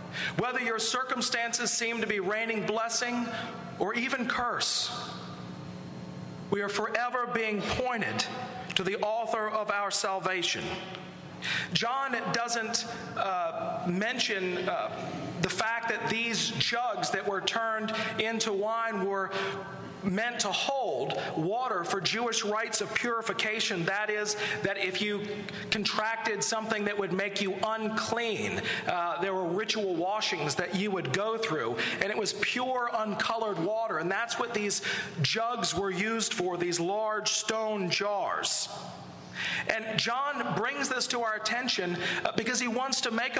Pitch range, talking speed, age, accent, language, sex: 195-230 Hz, 135 wpm, 40-59, American, English, male